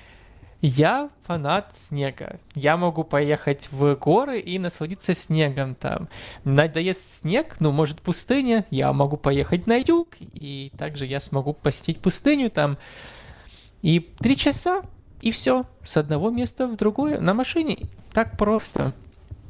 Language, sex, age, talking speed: Russian, male, 20-39, 130 wpm